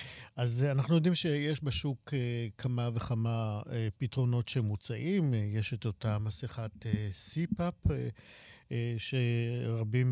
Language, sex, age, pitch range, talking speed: Hebrew, male, 50-69, 115-140 Hz, 120 wpm